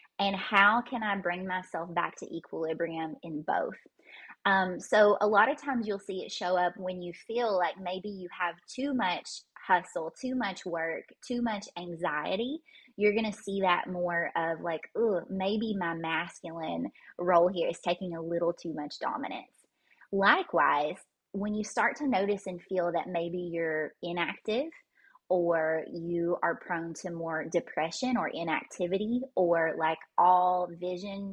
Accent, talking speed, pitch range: American, 160 wpm, 170-215 Hz